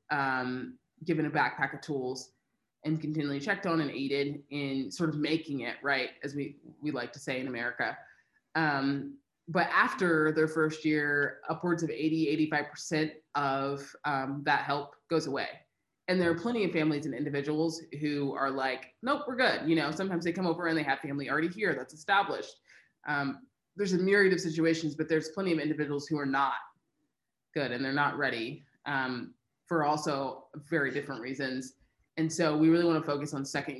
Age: 20-39